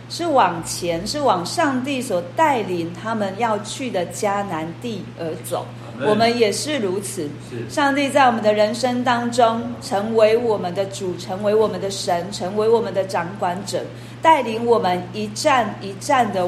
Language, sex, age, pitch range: Chinese, female, 40-59, 175-245 Hz